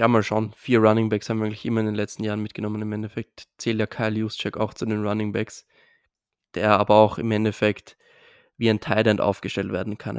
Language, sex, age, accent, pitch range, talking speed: German, male, 20-39, German, 105-115 Hz, 220 wpm